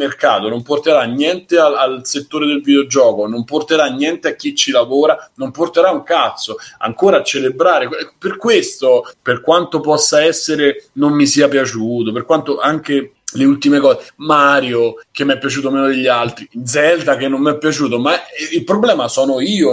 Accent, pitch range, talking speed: native, 130-205 Hz, 175 wpm